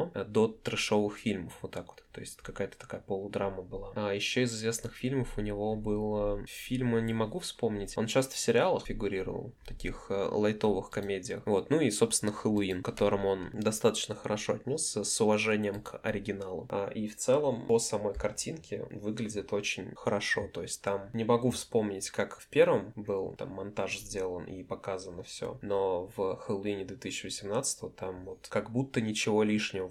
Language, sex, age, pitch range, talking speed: Russian, male, 20-39, 100-115 Hz, 170 wpm